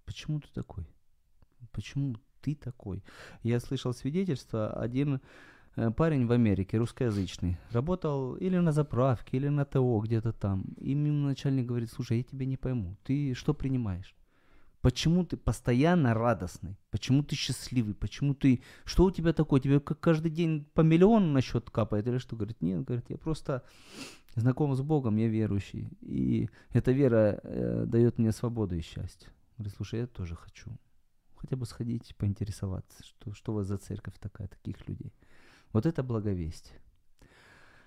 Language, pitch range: Ukrainian, 100-135 Hz